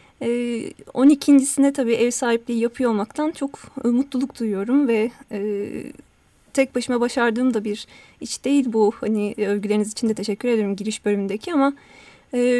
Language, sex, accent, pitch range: Turkish, female, native, 215-270 Hz